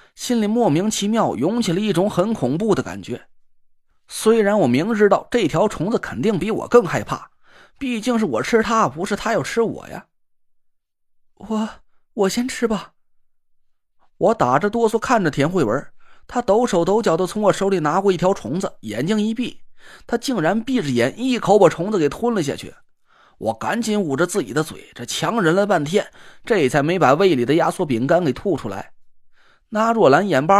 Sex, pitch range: male, 185-235 Hz